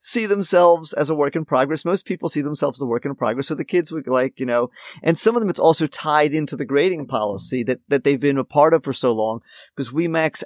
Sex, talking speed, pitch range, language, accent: male, 270 wpm, 115-150 Hz, English, American